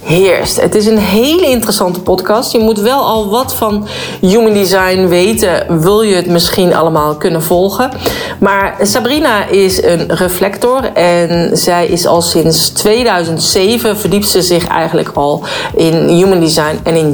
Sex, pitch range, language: female, 160-210 Hz, Dutch